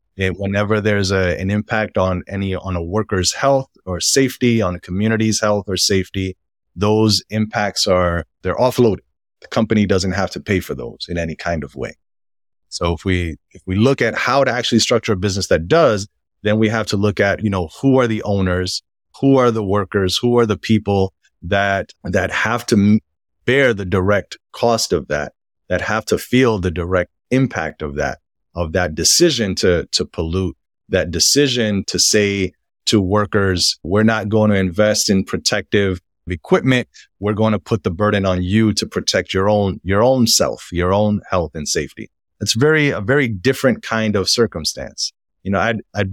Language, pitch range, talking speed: English, 90-110 Hz, 185 wpm